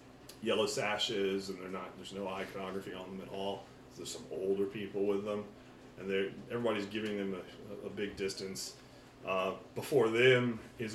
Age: 30-49